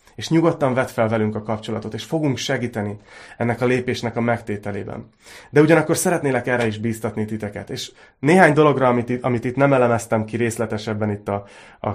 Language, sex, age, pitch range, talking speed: Hungarian, male, 30-49, 110-130 Hz, 175 wpm